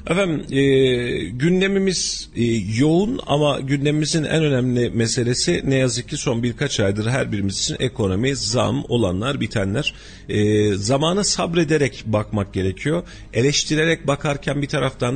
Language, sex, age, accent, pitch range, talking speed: Turkish, male, 40-59, native, 105-135 Hz, 125 wpm